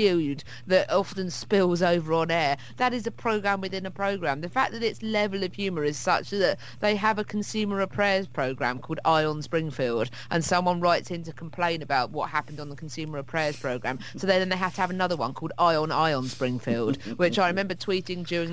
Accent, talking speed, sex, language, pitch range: British, 210 wpm, female, English, 140-185 Hz